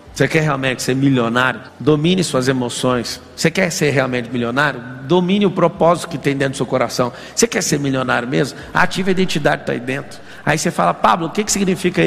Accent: Brazilian